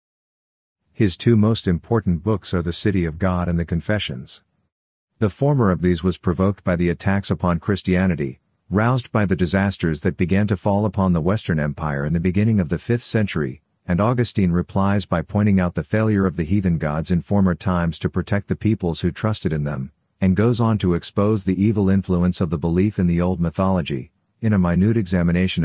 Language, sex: English, male